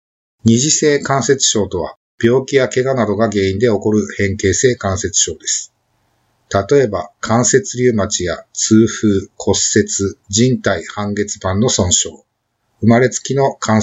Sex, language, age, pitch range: male, Japanese, 50-69, 105-125 Hz